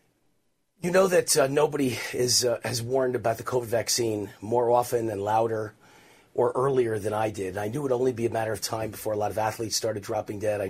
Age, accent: 30-49, American